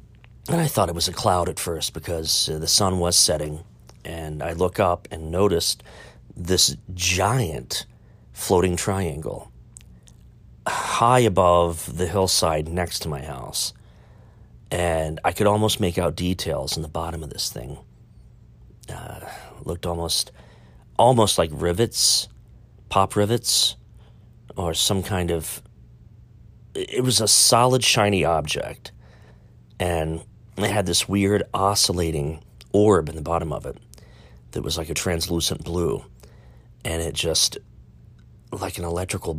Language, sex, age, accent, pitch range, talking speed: English, male, 40-59, American, 80-100 Hz, 135 wpm